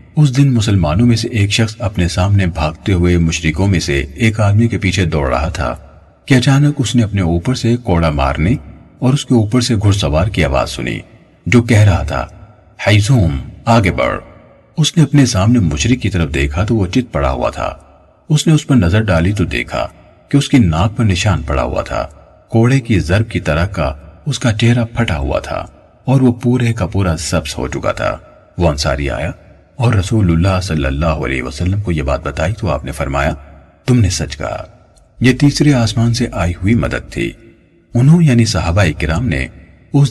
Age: 40-59